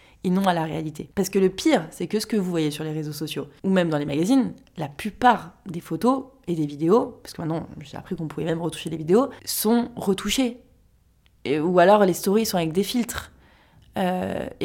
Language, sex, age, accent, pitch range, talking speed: French, female, 20-39, French, 165-210 Hz, 220 wpm